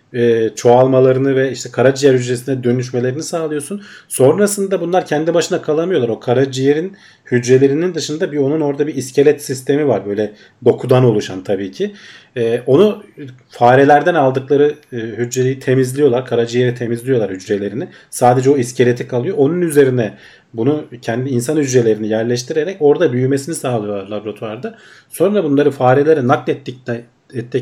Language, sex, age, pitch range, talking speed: Turkish, male, 40-59, 120-150 Hz, 120 wpm